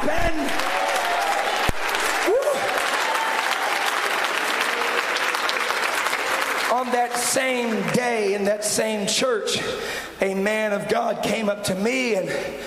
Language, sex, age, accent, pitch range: English, male, 40-59, American, 200-255 Hz